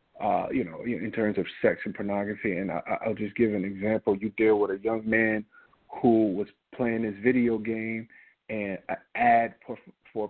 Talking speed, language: 185 wpm, English